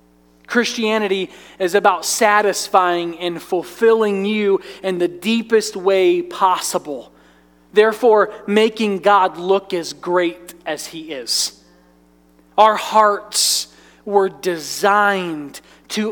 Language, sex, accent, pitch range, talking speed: English, male, American, 175-230 Hz, 95 wpm